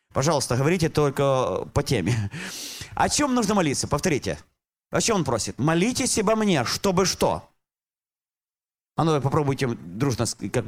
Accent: native